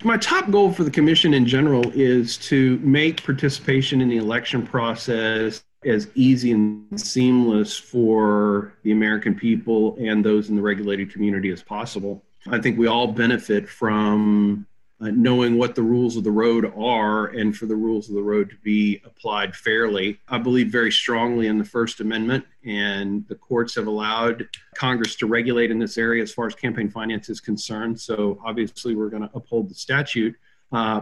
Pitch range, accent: 110-135 Hz, American